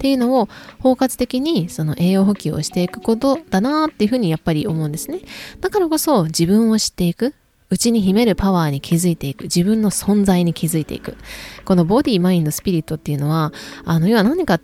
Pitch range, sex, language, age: 160-215 Hz, female, Japanese, 20-39